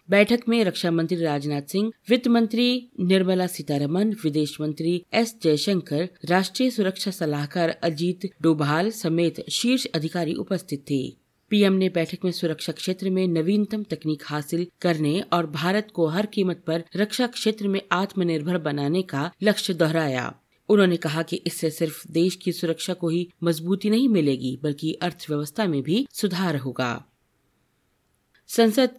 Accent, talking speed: native, 145 wpm